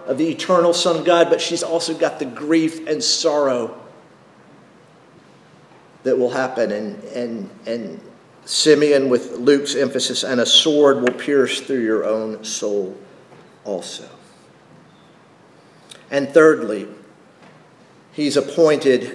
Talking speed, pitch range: 120 wpm, 135-190 Hz